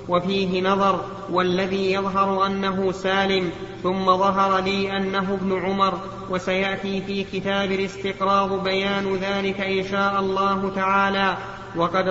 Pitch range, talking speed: 190-200 Hz, 115 wpm